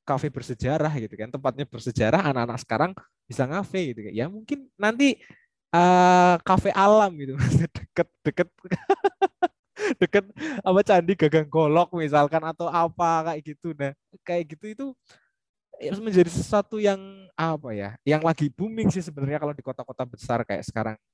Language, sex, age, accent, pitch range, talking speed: Indonesian, male, 20-39, native, 120-175 Hz, 150 wpm